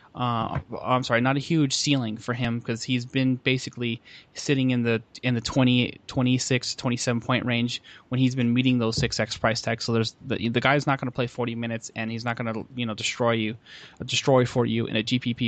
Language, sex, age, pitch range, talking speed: English, male, 20-39, 110-125 Hz, 225 wpm